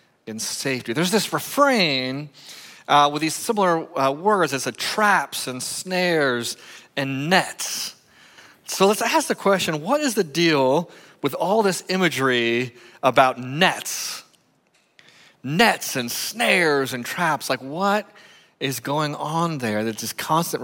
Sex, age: male, 30-49